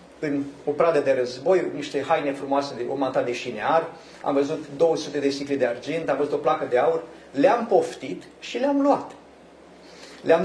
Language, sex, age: Romanian, male, 30-49